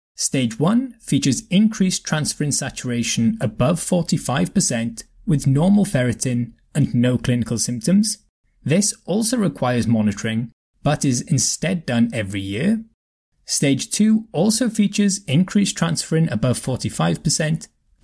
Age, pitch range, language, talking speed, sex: 20-39, 120-185 Hz, English, 110 wpm, male